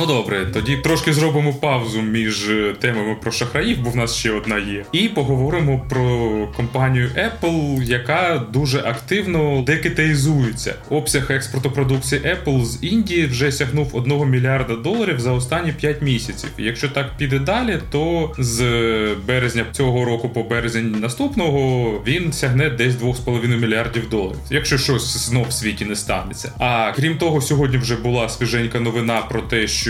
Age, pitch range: 20-39, 110-145 Hz